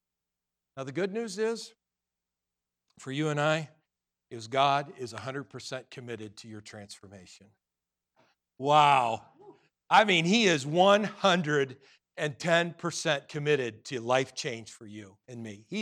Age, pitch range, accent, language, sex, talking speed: 50-69, 85-140 Hz, American, English, male, 120 wpm